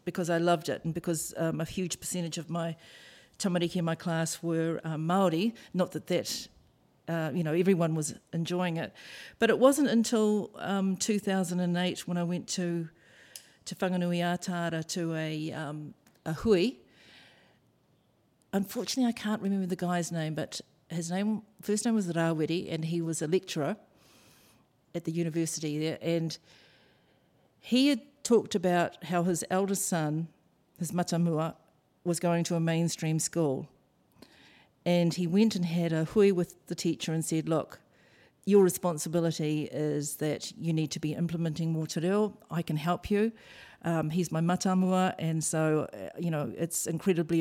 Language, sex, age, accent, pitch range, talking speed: English, female, 50-69, Australian, 160-185 Hz, 155 wpm